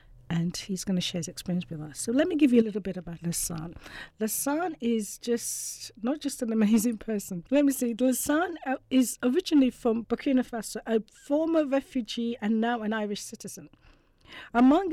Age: 50-69